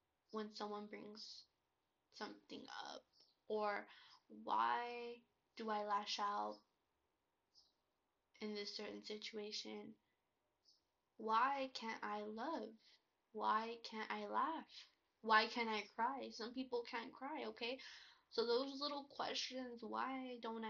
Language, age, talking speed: English, 10-29, 110 wpm